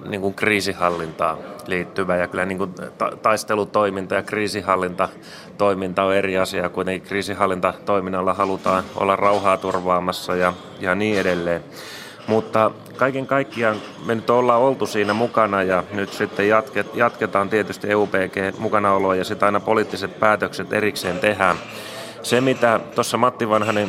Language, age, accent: Finnish, 30-49, native